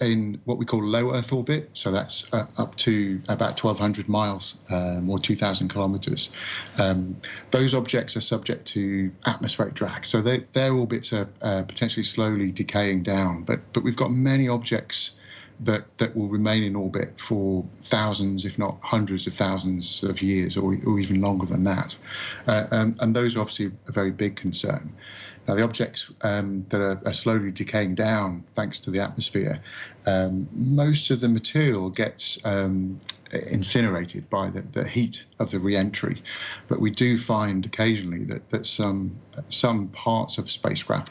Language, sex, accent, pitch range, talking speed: English, male, British, 95-115 Hz, 170 wpm